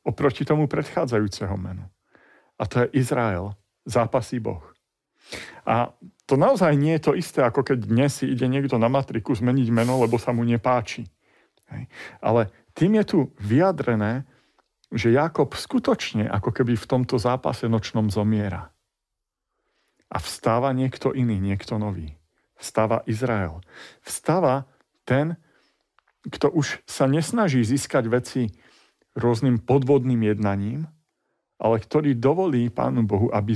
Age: 50-69